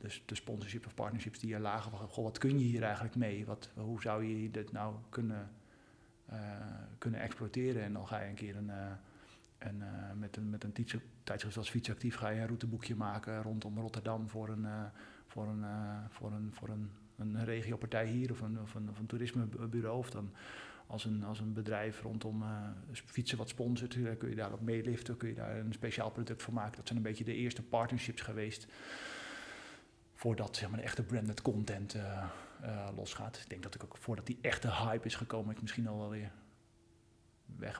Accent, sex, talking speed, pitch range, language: Dutch, male, 185 wpm, 110-120 Hz, Dutch